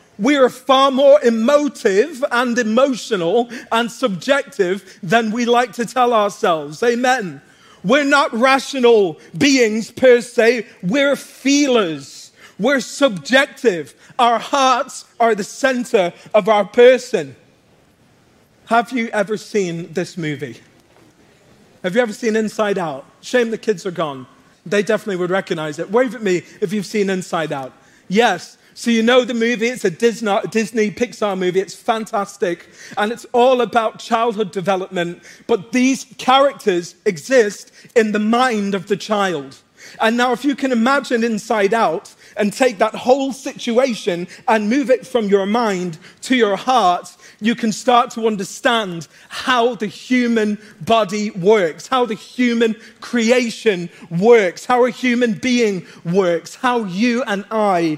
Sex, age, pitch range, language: male, 40-59, 200-250 Hz, English